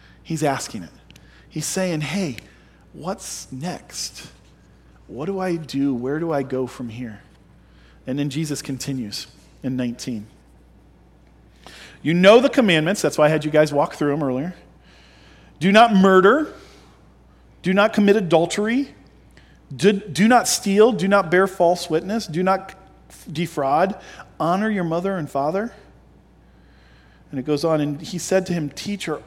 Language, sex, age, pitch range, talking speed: English, male, 40-59, 125-185 Hz, 150 wpm